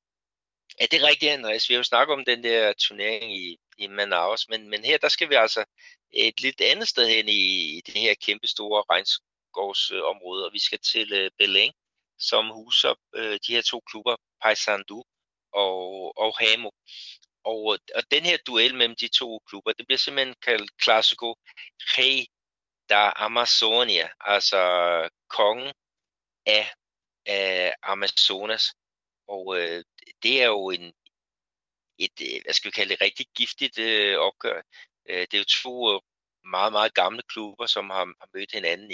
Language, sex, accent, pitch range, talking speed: Danish, male, native, 105-150 Hz, 155 wpm